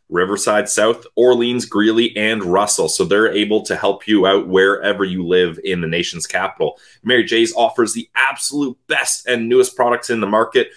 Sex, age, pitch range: male, 30-49, 105-140 Hz